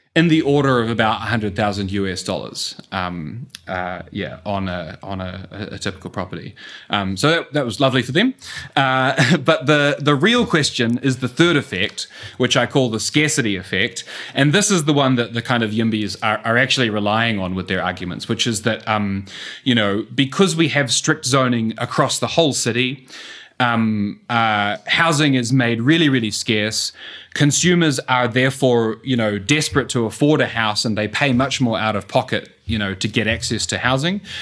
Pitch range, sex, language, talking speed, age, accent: 105-135 Hz, male, English, 190 wpm, 20-39, Australian